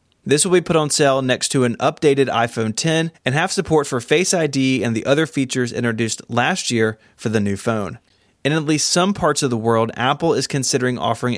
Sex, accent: male, American